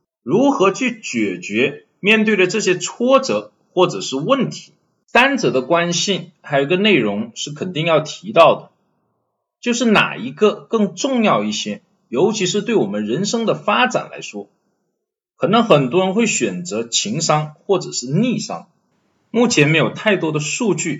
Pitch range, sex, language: 165-230 Hz, male, Chinese